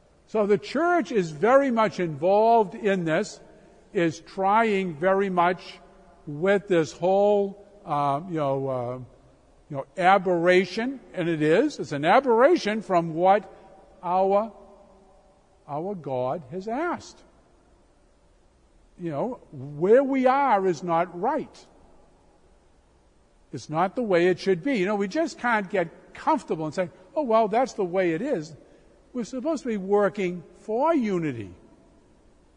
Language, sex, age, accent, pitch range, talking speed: English, male, 50-69, American, 150-215 Hz, 135 wpm